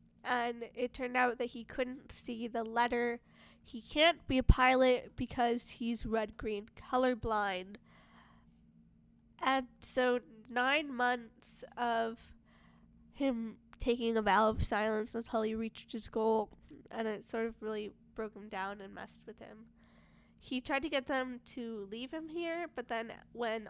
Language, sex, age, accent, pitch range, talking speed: English, female, 10-29, American, 220-255 Hz, 150 wpm